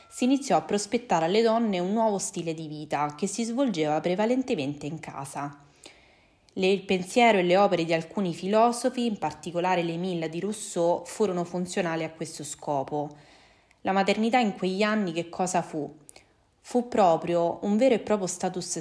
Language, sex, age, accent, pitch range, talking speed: Italian, female, 20-39, native, 165-200 Hz, 165 wpm